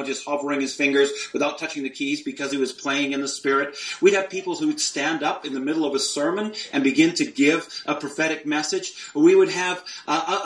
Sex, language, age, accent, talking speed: male, English, 40-59, American, 225 wpm